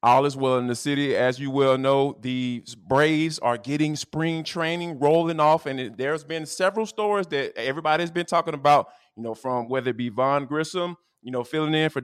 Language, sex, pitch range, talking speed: English, male, 135-165 Hz, 205 wpm